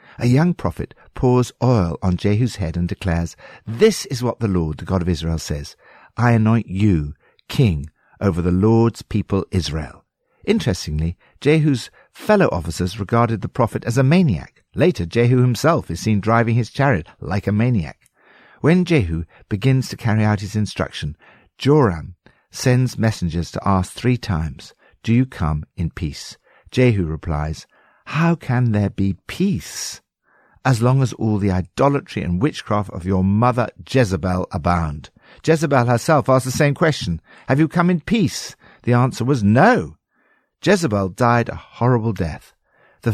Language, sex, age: English, male, 60-79